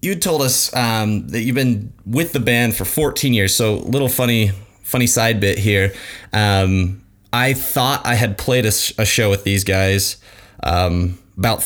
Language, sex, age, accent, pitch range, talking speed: English, male, 20-39, American, 100-120 Hz, 180 wpm